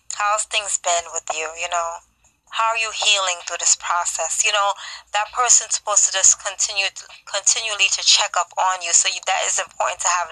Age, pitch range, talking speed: 20-39, 175-220 Hz, 210 wpm